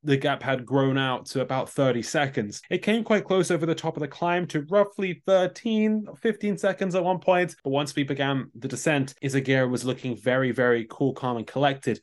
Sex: male